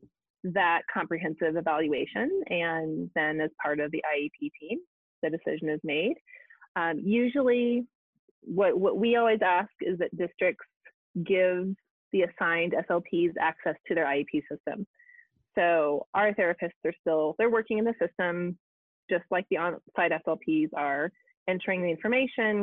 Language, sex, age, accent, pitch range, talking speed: English, female, 30-49, American, 165-230 Hz, 145 wpm